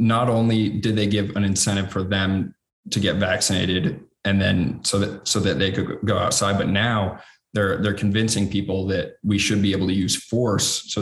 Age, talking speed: 20-39, 200 wpm